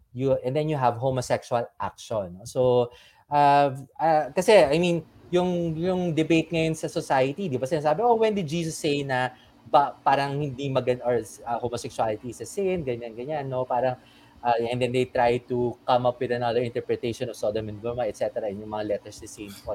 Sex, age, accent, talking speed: male, 20-39, Filipino, 175 wpm